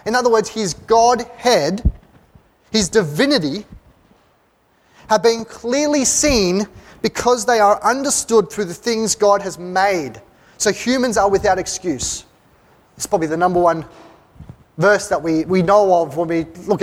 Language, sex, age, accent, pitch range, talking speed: English, male, 20-39, Australian, 190-250 Hz, 145 wpm